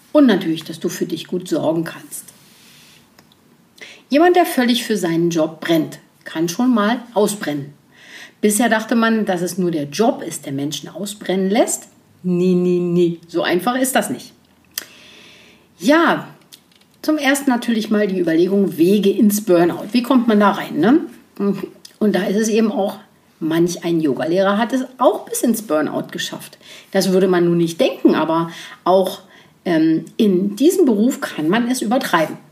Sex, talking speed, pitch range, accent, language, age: female, 160 wpm, 180-245 Hz, German, German, 50-69